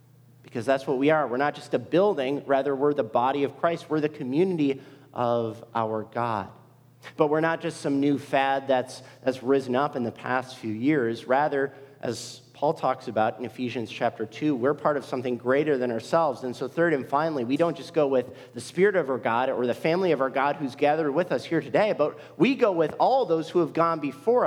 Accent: American